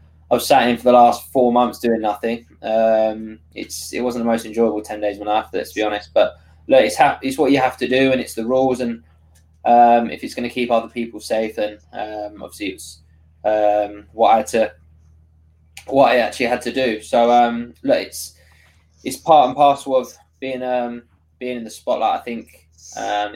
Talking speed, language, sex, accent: 215 wpm, English, male, British